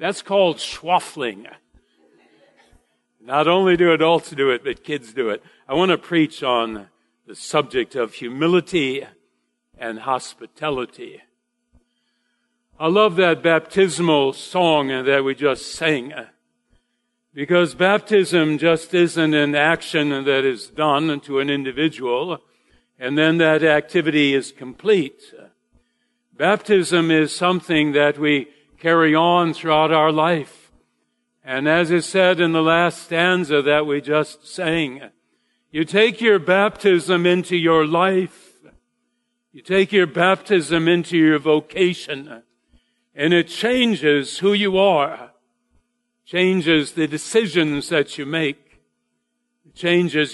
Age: 50-69